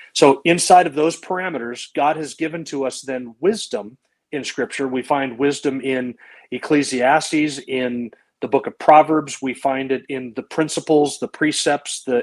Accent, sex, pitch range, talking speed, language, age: American, male, 130-155 Hz, 160 wpm, English, 40-59